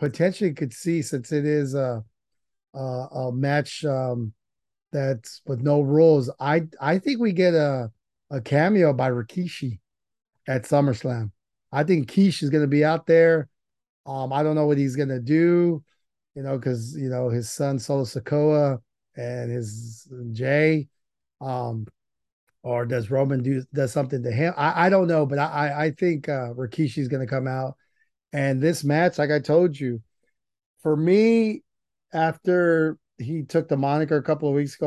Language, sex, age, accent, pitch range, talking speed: English, male, 30-49, American, 130-155 Hz, 175 wpm